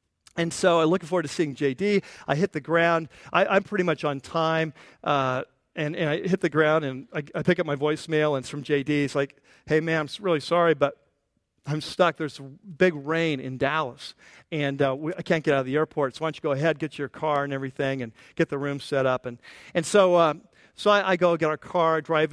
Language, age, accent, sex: English, 50-69, American, male